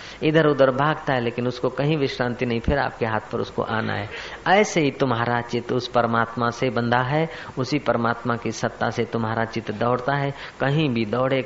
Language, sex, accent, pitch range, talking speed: Hindi, female, native, 120-180 Hz, 195 wpm